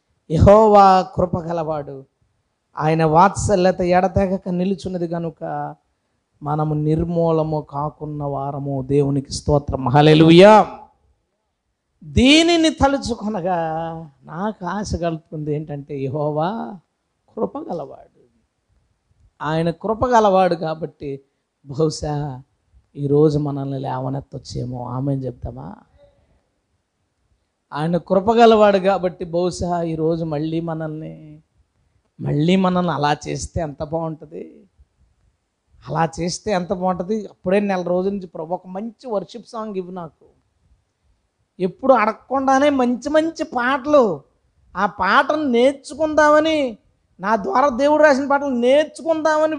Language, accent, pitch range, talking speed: Telugu, native, 145-235 Hz, 85 wpm